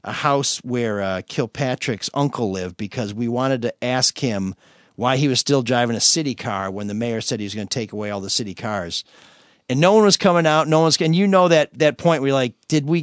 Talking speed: 245 wpm